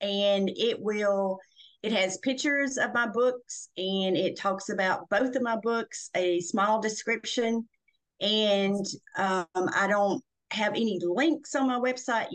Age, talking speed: 40-59, 145 wpm